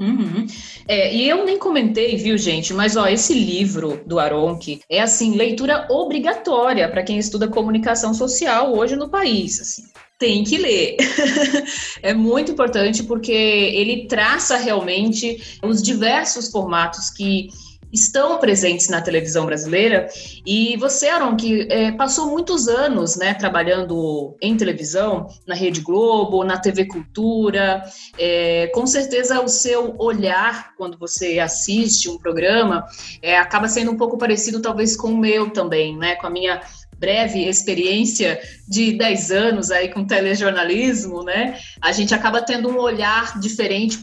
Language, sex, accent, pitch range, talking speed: Portuguese, female, Brazilian, 185-235 Hz, 140 wpm